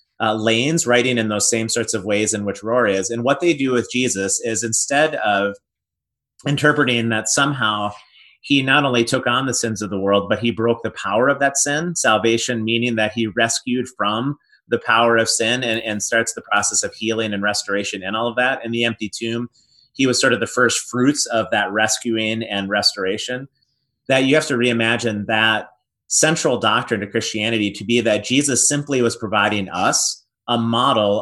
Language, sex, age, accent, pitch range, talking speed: English, male, 30-49, American, 110-130 Hz, 195 wpm